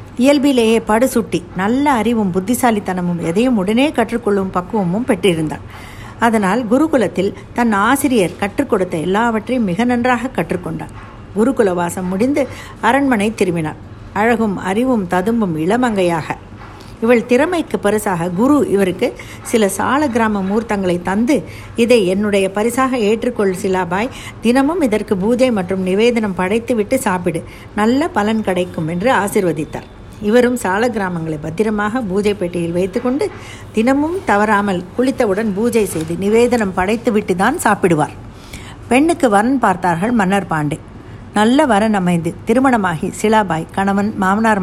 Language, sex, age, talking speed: Tamil, female, 60-79, 110 wpm